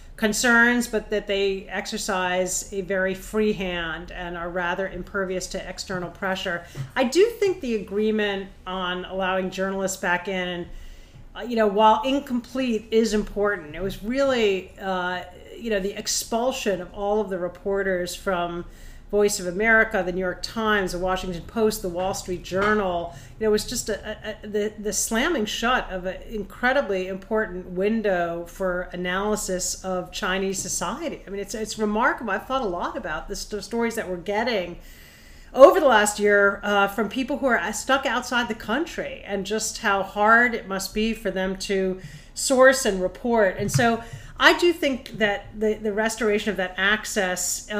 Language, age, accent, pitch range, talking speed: English, 40-59, American, 190-225 Hz, 170 wpm